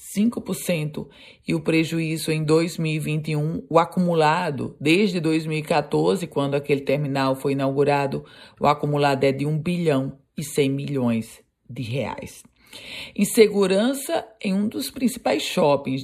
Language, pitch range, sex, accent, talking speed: Portuguese, 145-175 Hz, female, Brazilian, 125 wpm